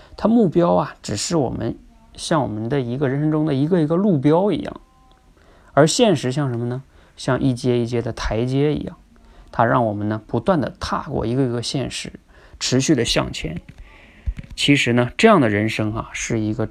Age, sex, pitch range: 20-39, male, 110-155 Hz